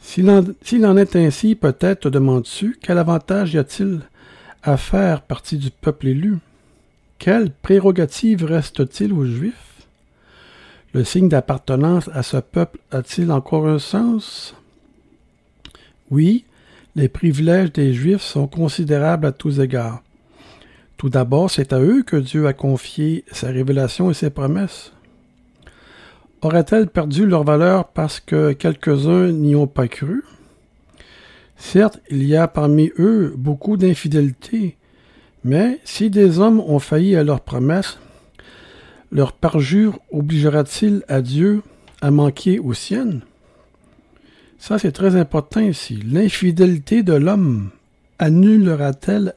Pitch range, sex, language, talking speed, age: 140-195 Hz, male, French, 130 wpm, 60-79